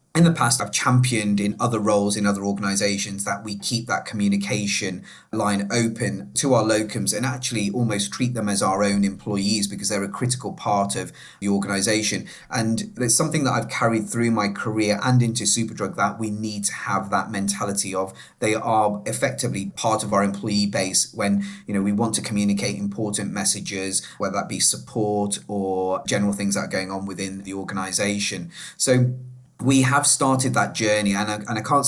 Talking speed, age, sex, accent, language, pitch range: 185 wpm, 30-49, male, British, English, 100-110 Hz